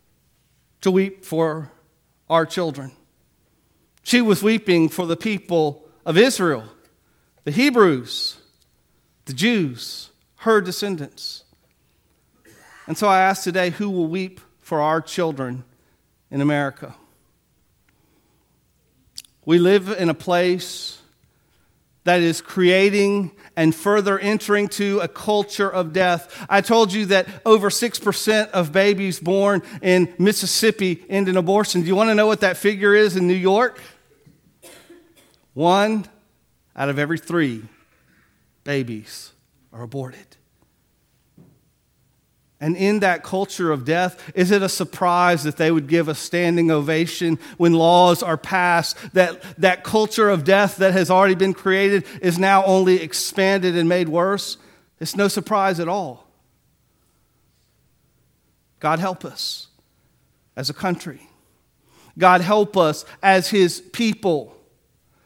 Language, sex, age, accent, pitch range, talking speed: English, male, 40-59, American, 160-200 Hz, 125 wpm